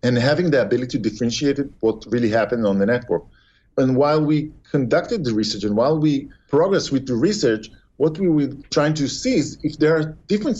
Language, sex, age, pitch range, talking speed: English, male, 40-59, 115-155 Hz, 205 wpm